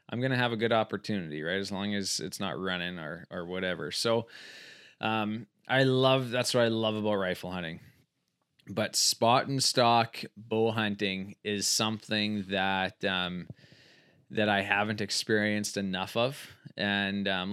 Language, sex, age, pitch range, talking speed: English, male, 20-39, 100-115 Hz, 160 wpm